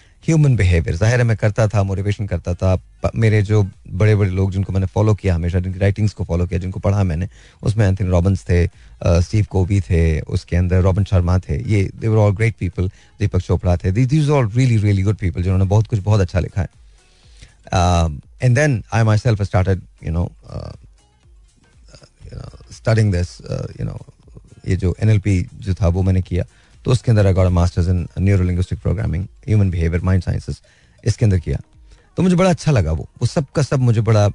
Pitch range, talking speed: 95-120 Hz, 180 wpm